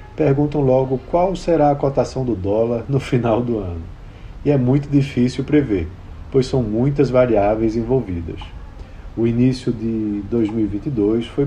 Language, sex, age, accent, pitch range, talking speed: Portuguese, male, 50-69, Brazilian, 105-140 Hz, 140 wpm